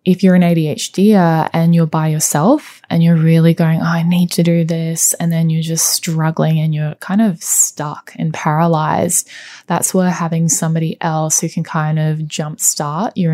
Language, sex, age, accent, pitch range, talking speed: English, female, 10-29, Australian, 155-180 Hz, 180 wpm